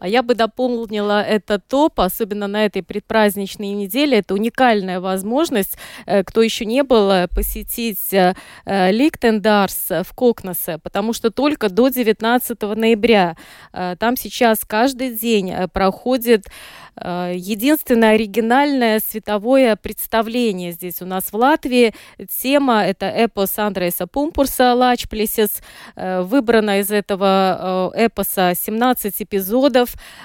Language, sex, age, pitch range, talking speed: Russian, female, 20-39, 195-240 Hz, 105 wpm